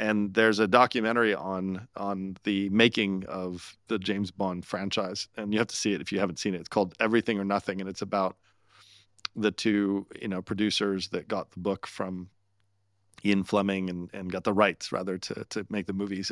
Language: English